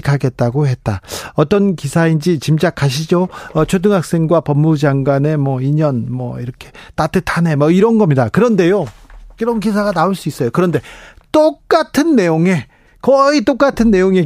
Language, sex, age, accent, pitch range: Korean, male, 40-59, native, 145-215 Hz